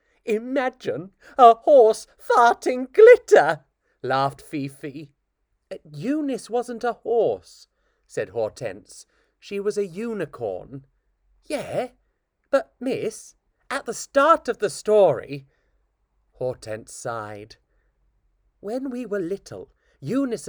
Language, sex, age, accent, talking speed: English, male, 30-49, British, 100 wpm